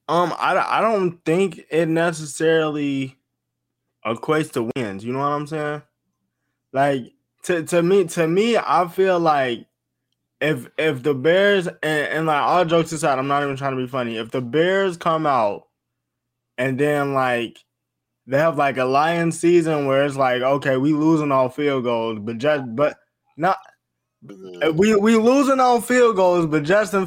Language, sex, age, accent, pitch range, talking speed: English, male, 20-39, American, 135-180 Hz, 170 wpm